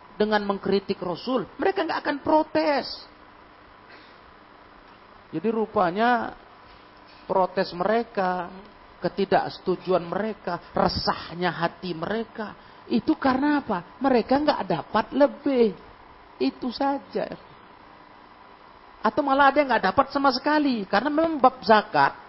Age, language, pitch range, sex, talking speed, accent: 40-59, Indonesian, 170-260 Hz, male, 100 wpm, native